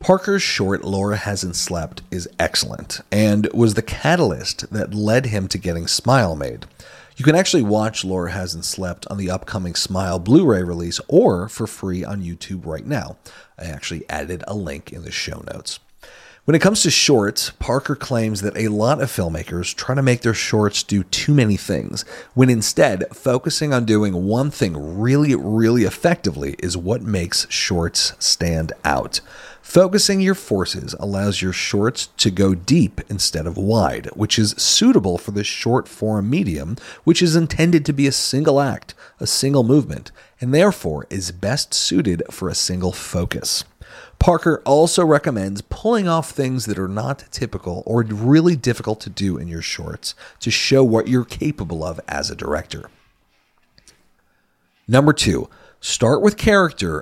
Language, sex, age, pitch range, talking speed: English, male, 40-59, 95-135 Hz, 165 wpm